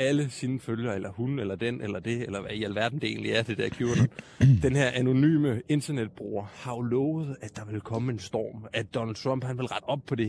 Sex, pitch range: male, 120-150 Hz